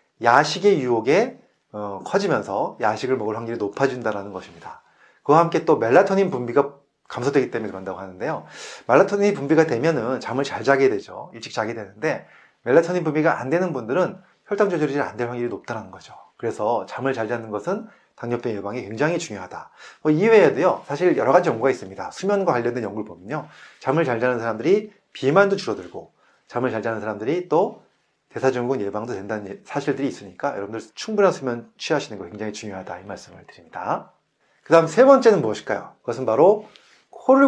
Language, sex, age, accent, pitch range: Korean, male, 30-49, native, 115-180 Hz